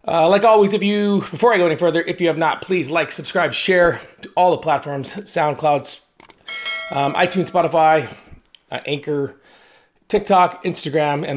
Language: English